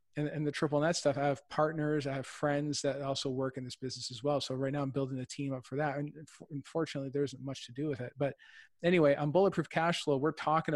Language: English